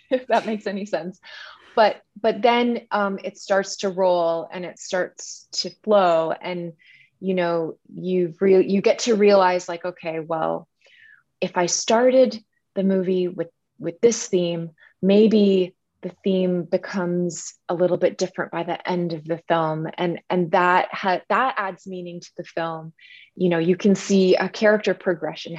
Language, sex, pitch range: English, female, 175-210 Hz